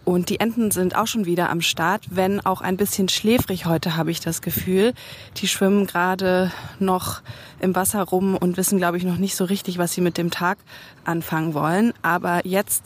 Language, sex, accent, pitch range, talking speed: German, female, German, 170-200 Hz, 200 wpm